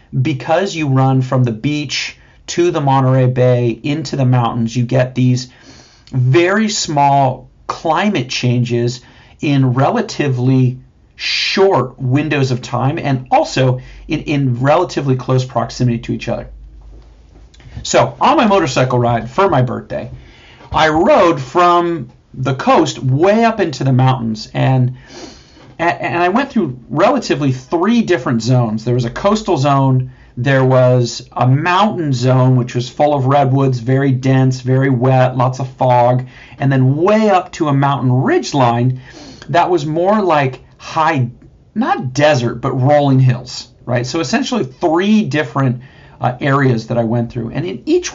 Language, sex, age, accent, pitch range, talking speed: English, male, 40-59, American, 125-150 Hz, 145 wpm